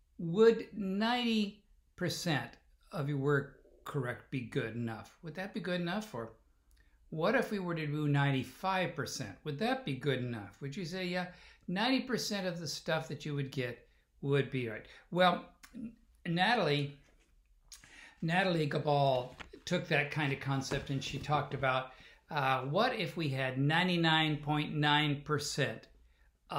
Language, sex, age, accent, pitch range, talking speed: English, male, 60-79, American, 135-185 Hz, 140 wpm